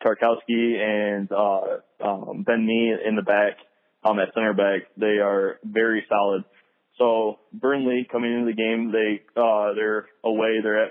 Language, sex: English, male